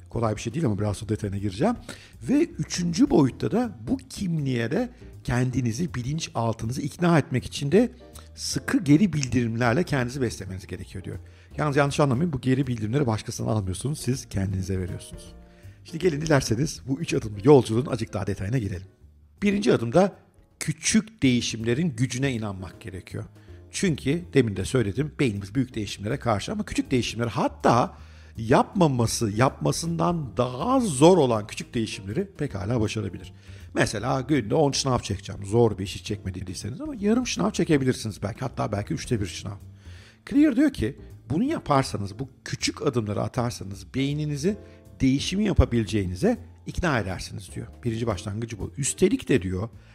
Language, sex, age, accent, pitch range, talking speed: Turkish, male, 60-79, native, 105-155 Hz, 145 wpm